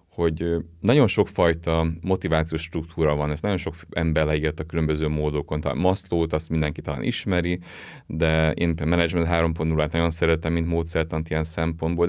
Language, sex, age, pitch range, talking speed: Hungarian, male, 30-49, 80-90 Hz, 150 wpm